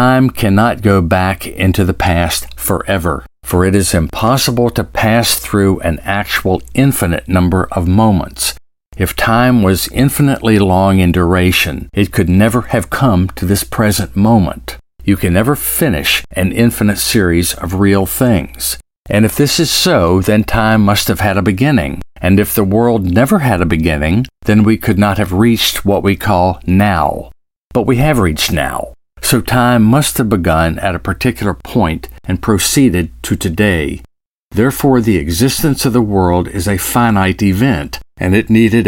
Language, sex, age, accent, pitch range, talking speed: English, male, 50-69, American, 90-115 Hz, 165 wpm